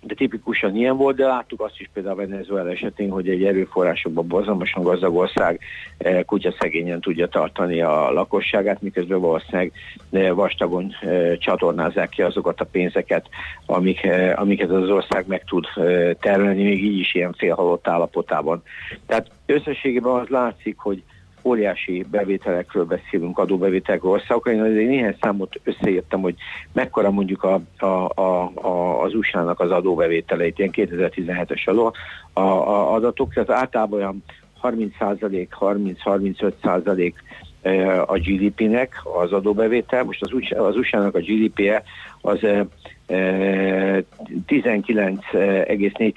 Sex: male